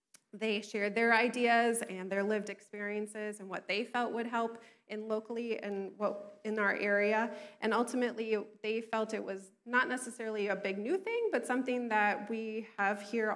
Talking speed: 170 wpm